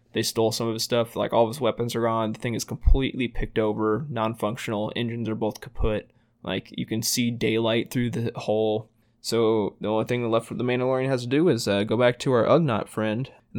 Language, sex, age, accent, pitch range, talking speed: English, male, 20-39, American, 115-125 Hz, 230 wpm